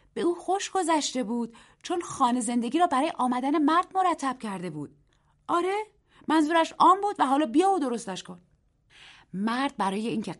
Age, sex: 30-49, female